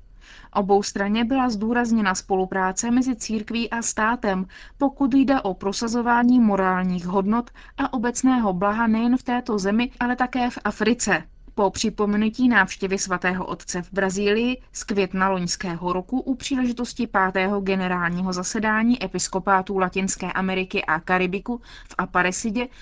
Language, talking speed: Czech, 130 wpm